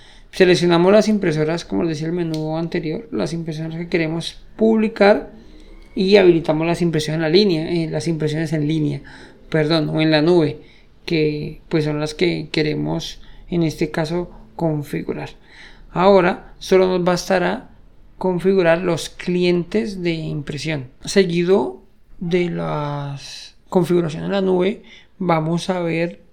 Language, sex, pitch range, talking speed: Spanish, male, 155-180 Hz, 130 wpm